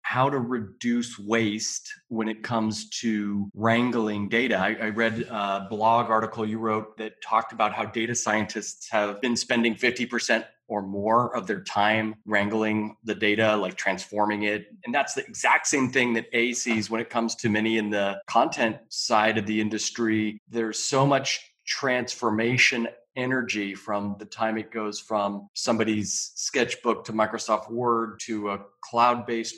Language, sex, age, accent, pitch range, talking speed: English, male, 30-49, American, 105-120 Hz, 160 wpm